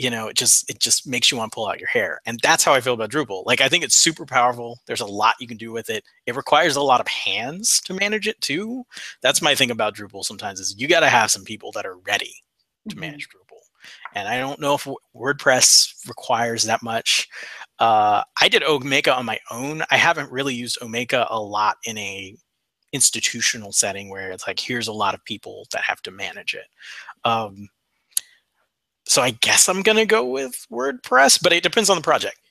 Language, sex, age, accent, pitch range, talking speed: English, male, 30-49, American, 115-165 Hz, 220 wpm